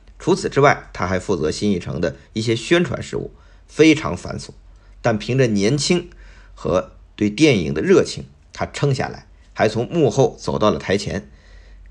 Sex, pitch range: male, 85-135 Hz